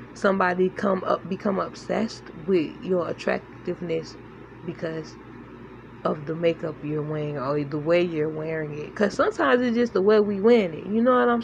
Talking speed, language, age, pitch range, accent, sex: 175 wpm, English, 10-29, 180-220 Hz, American, female